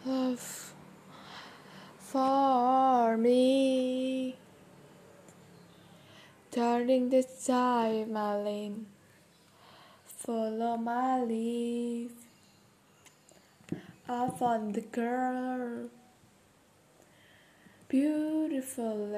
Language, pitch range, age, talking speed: Indonesian, 230-260 Hz, 10-29, 50 wpm